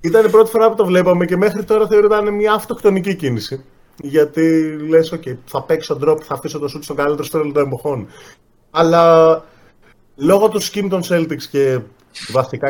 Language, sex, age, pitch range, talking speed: Greek, male, 30-49, 120-175 Hz, 180 wpm